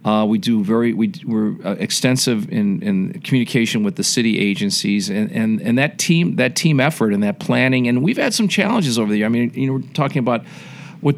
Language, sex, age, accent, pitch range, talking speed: English, male, 40-59, American, 115-160 Hz, 220 wpm